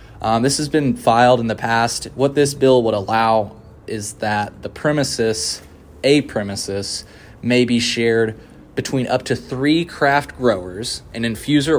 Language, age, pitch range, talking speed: English, 20-39, 105-135 Hz, 155 wpm